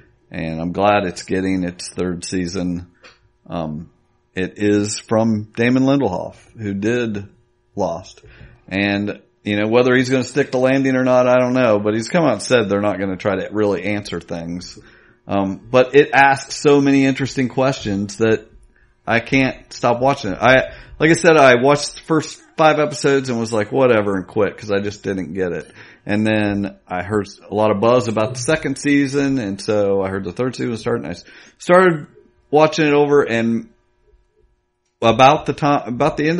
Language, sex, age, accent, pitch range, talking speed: English, male, 40-59, American, 100-135 Hz, 190 wpm